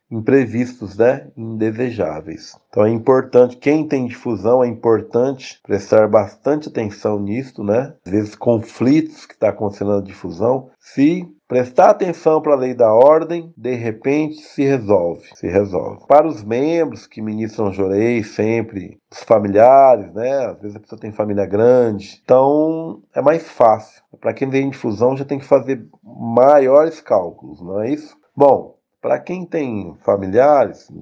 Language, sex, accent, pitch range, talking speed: Portuguese, male, Brazilian, 105-140 Hz, 150 wpm